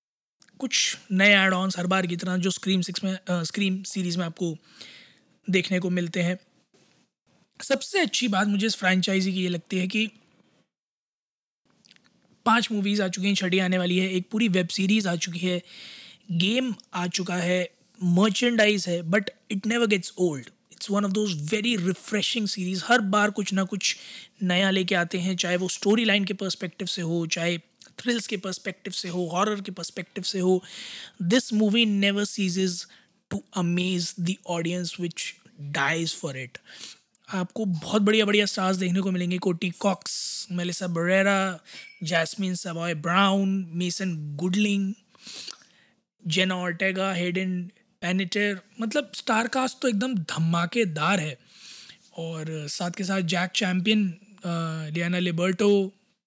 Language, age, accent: Hindi, 20-39, native